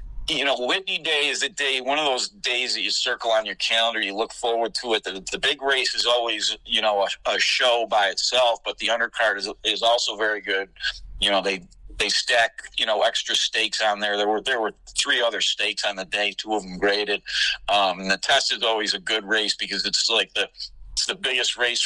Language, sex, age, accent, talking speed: English, male, 50-69, American, 230 wpm